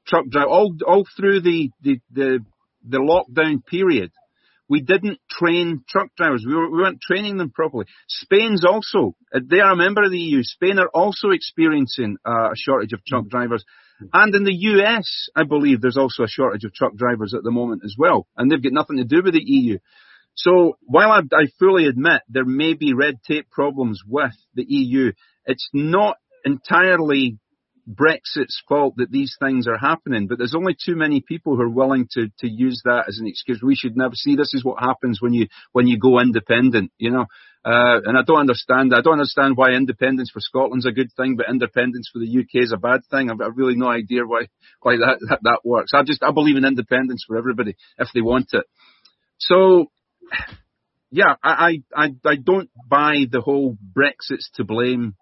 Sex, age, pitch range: male, 40-59, 120-160 Hz